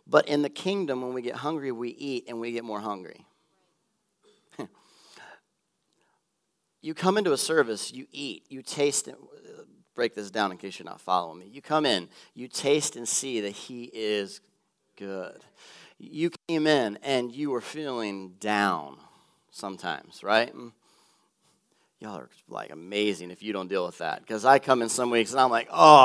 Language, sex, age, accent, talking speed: English, male, 40-59, American, 175 wpm